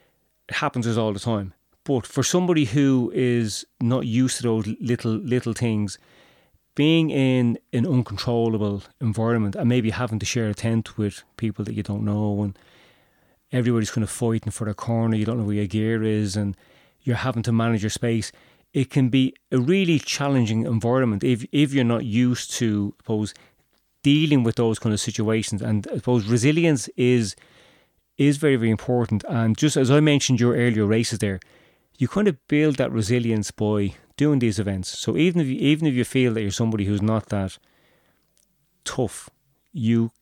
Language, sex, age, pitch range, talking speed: English, male, 30-49, 105-125 Hz, 180 wpm